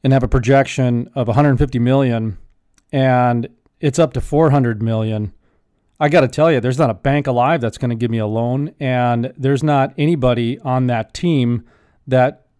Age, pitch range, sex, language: 40-59, 120-145 Hz, male, English